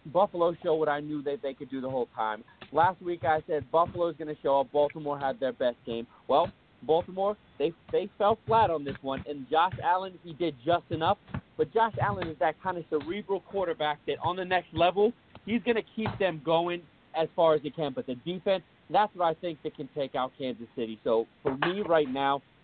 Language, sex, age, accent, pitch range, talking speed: English, male, 40-59, American, 135-175 Hz, 230 wpm